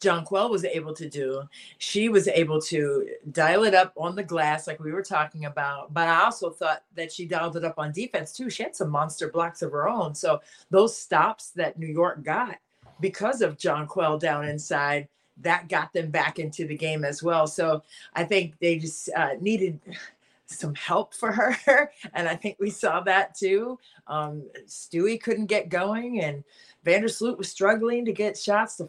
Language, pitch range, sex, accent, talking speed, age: English, 155-200 Hz, female, American, 195 wpm, 40-59